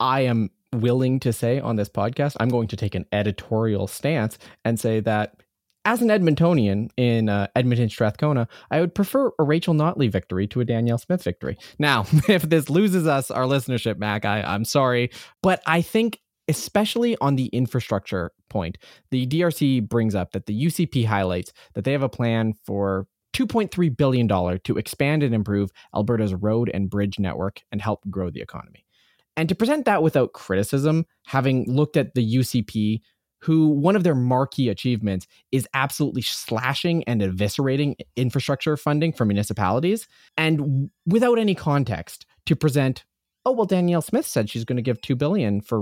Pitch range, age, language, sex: 105-155 Hz, 20-39, English, male